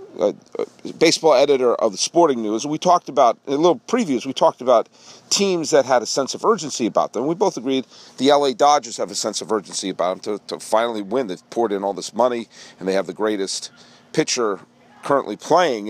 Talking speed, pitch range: 215 wpm, 125-200 Hz